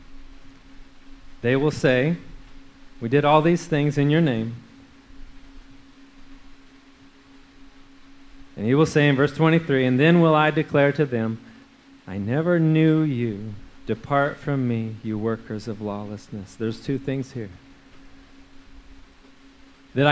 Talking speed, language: 120 wpm, English